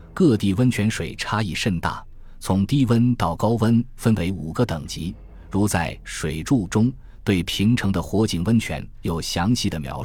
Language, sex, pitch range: Chinese, male, 85-115 Hz